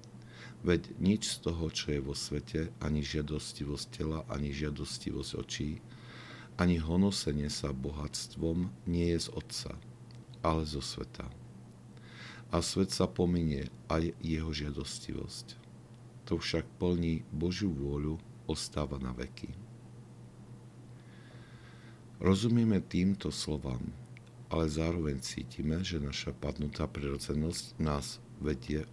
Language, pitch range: Slovak, 70-90 Hz